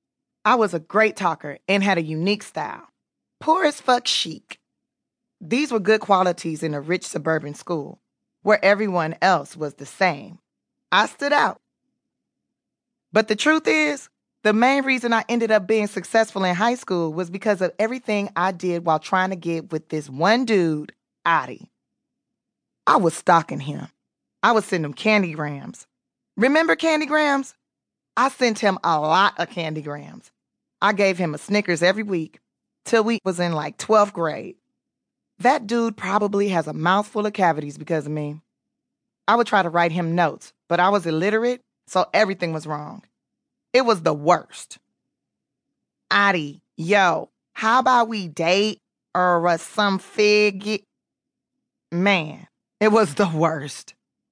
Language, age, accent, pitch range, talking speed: English, 20-39, American, 170-225 Hz, 155 wpm